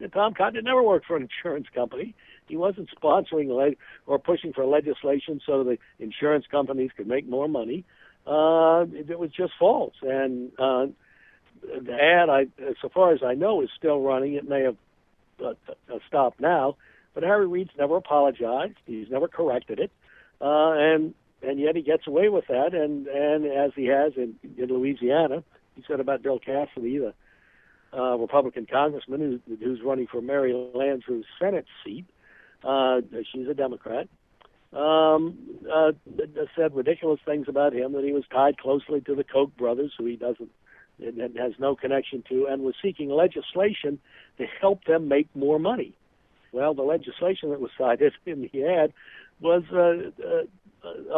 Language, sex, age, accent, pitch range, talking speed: English, male, 60-79, American, 135-165 Hz, 170 wpm